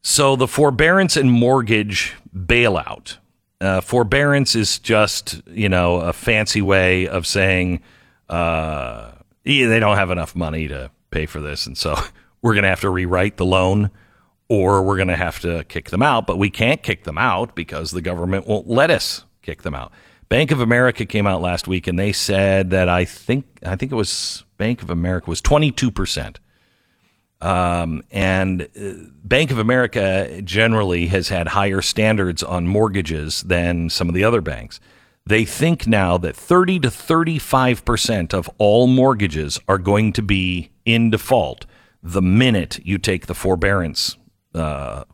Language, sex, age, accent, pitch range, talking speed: English, male, 50-69, American, 90-115 Hz, 165 wpm